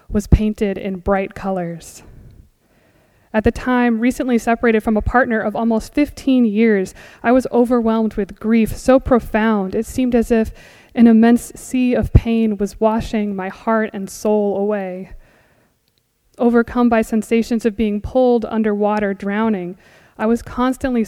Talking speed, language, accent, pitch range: 145 wpm, English, American, 210-235 Hz